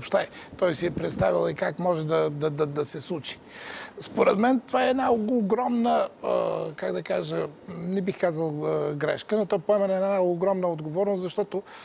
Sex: male